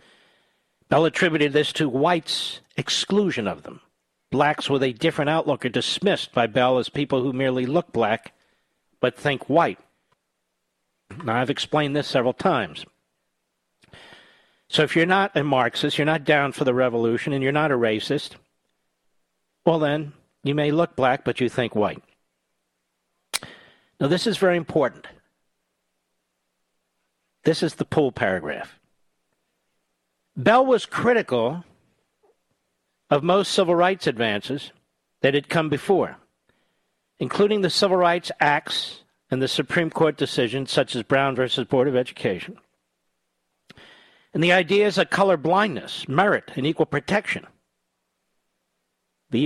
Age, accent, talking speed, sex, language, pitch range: 50-69, American, 130 wpm, male, English, 115-165 Hz